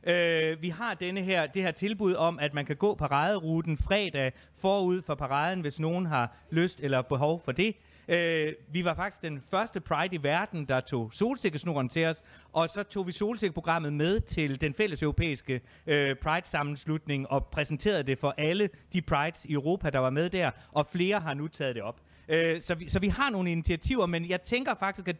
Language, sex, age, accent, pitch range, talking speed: Danish, male, 30-49, native, 145-190 Hz, 205 wpm